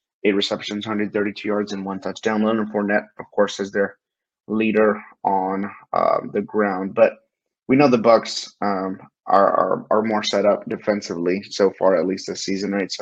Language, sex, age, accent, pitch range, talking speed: English, male, 20-39, American, 100-115 Hz, 185 wpm